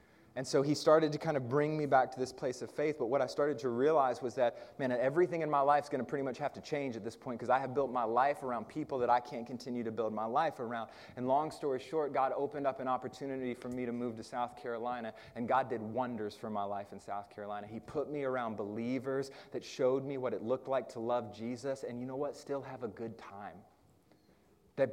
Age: 30-49